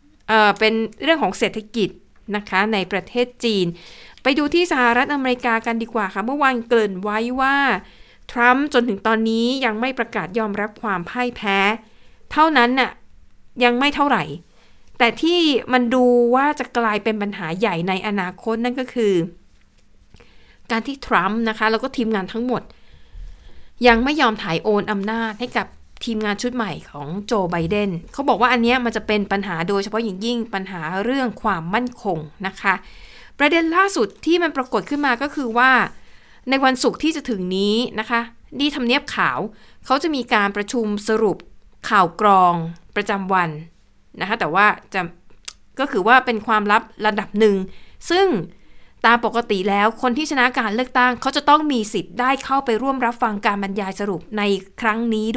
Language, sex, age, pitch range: Thai, female, 60-79, 200-250 Hz